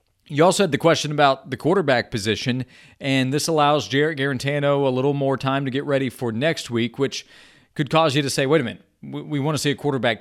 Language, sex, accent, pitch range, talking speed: English, male, American, 125-150 Hz, 230 wpm